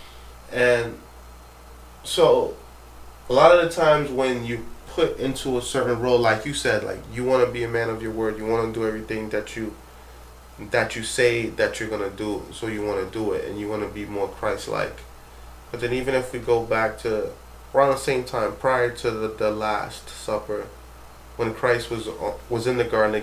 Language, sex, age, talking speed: English, male, 20-39, 210 wpm